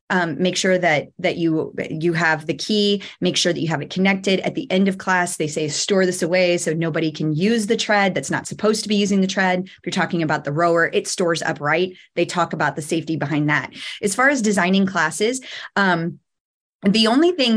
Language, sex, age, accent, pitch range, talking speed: English, female, 20-39, American, 165-205 Hz, 225 wpm